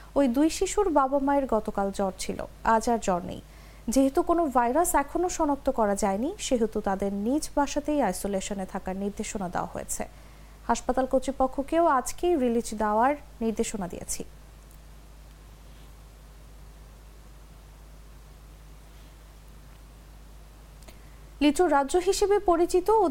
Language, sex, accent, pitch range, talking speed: English, female, Indian, 220-320 Hz, 105 wpm